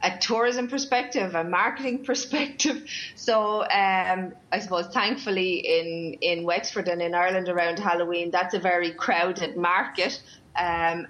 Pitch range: 175-205 Hz